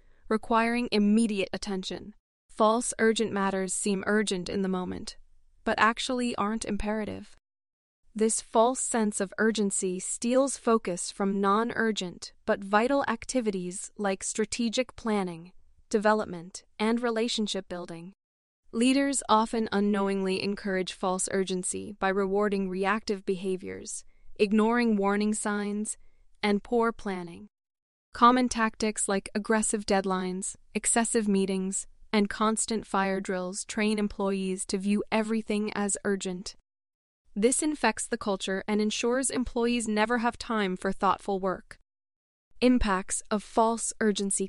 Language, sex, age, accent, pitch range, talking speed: English, female, 20-39, American, 195-225 Hz, 115 wpm